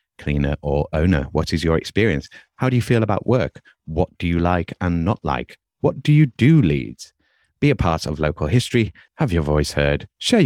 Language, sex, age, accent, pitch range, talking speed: English, male, 30-49, British, 75-120 Hz, 205 wpm